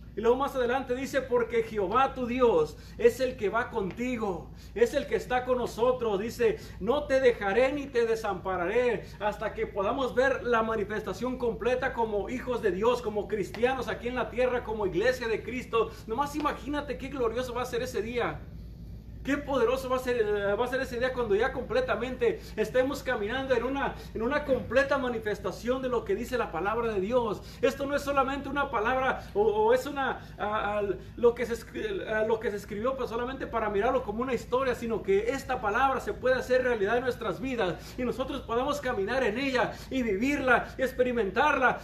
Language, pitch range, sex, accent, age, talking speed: Spanish, 225-270 Hz, male, Mexican, 40-59, 190 wpm